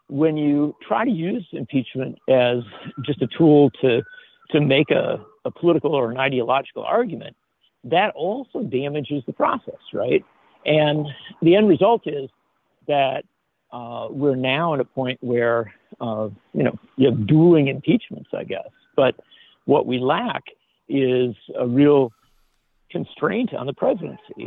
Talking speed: 145 wpm